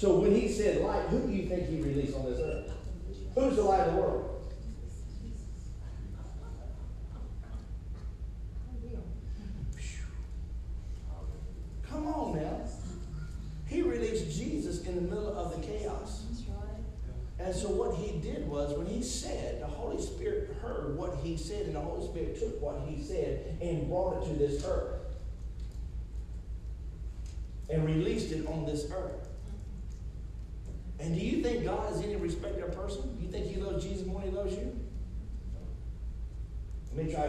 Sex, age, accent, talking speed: male, 40-59, American, 150 wpm